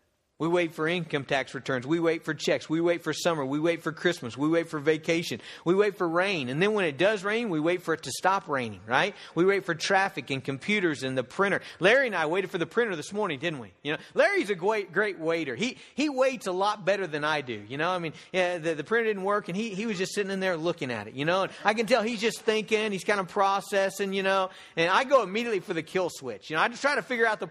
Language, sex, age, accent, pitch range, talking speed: English, male, 40-59, American, 160-215 Hz, 280 wpm